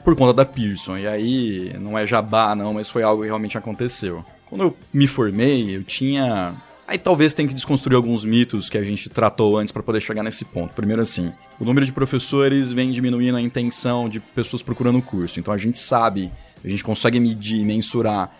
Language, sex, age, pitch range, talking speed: Portuguese, male, 20-39, 105-130 Hz, 210 wpm